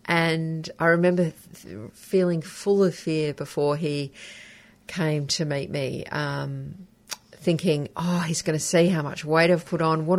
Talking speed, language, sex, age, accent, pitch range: 165 wpm, English, female, 40-59, Australian, 140-165 Hz